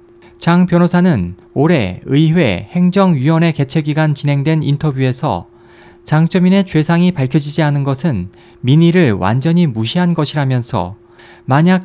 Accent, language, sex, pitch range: native, Korean, male, 125-175 Hz